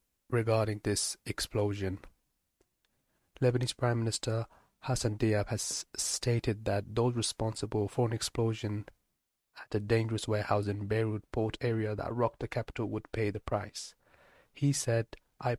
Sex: male